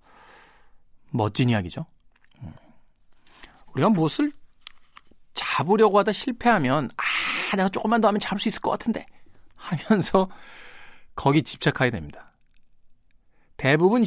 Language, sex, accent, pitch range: Korean, male, native, 150-235 Hz